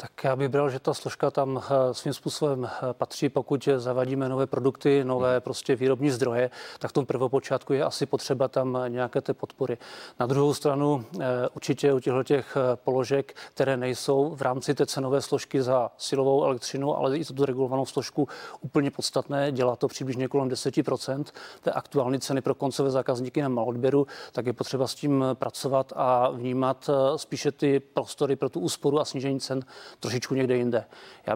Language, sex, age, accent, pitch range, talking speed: Czech, male, 40-59, native, 130-145 Hz, 170 wpm